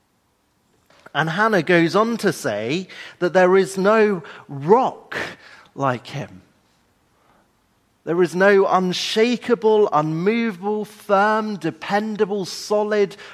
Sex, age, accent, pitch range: male, 40-59, British, 135-195 Hz